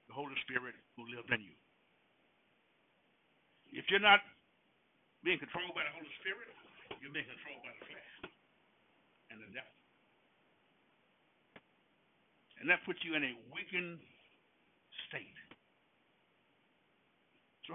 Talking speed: 115 wpm